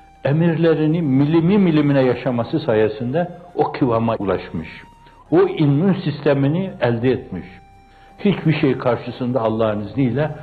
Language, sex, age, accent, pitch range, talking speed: Turkish, male, 60-79, native, 100-140 Hz, 105 wpm